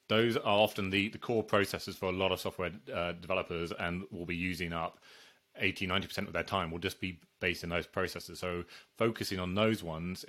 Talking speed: 205 wpm